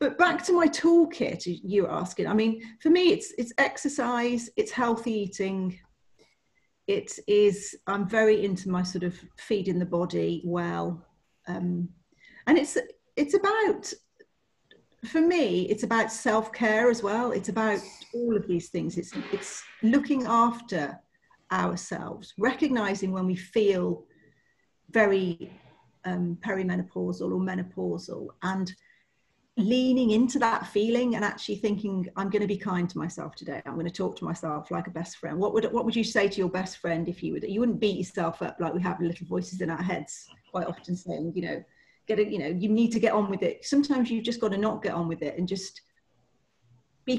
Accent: British